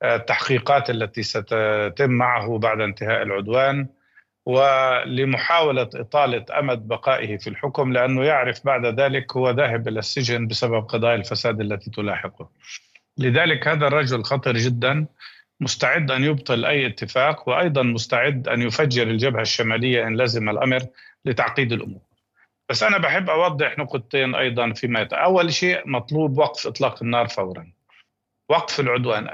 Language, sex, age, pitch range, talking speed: Arabic, male, 50-69, 115-145 Hz, 130 wpm